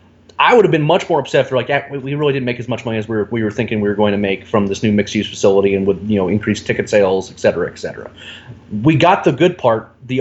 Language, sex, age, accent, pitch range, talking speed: English, male, 30-49, American, 110-135 Hz, 270 wpm